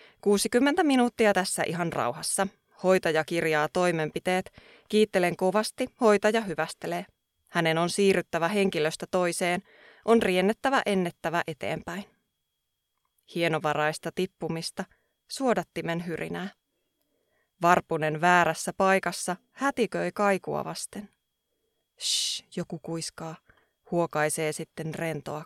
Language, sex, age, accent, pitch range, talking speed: Finnish, female, 20-39, native, 165-200 Hz, 85 wpm